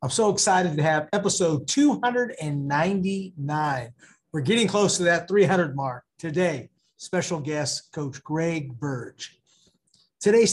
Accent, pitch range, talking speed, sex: American, 140-195 Hz, 120 wpm, male